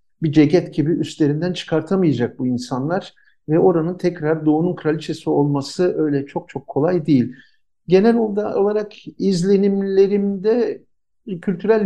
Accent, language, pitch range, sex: native, Turkish, 145-180 Hz, male